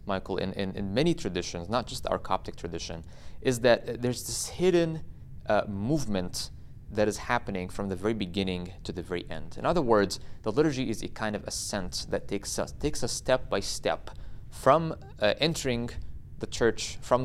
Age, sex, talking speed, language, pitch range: 20-39, male, 185 wpm, English, 90-115 Hz